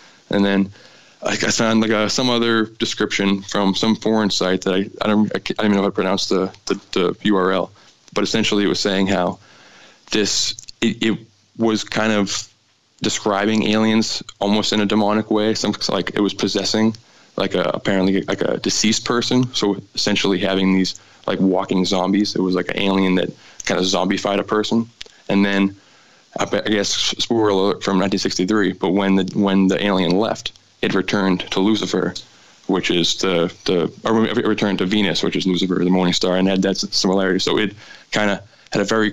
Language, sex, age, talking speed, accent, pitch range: English, male, 20-39, 185 wpm, American, 95-105 Hz